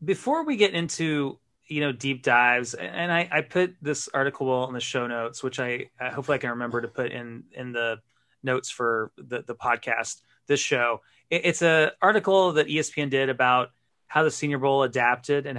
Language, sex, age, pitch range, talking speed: English, male, 30-49, 120-155 Hz, 195 wpm